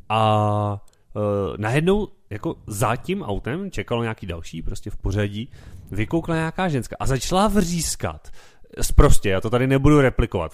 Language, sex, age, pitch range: Czech, male, 30-49, 105-140 Hz